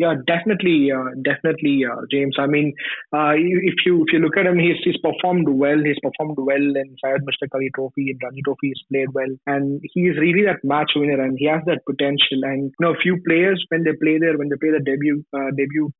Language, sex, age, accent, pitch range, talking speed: English, male, 20-39, Indian, 135-160 Hz, 235 wpm